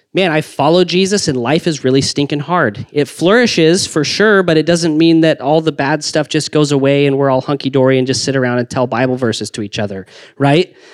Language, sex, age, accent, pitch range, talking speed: English, male, 30-49, American, 140-185 Hz, 230 wpm